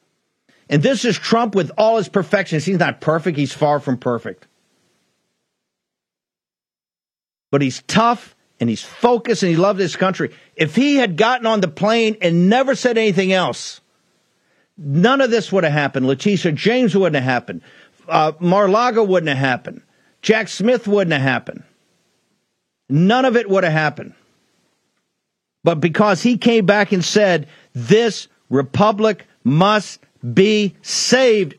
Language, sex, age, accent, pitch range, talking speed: English, male, 50-69, American, 160-220 Hz, 145 wpm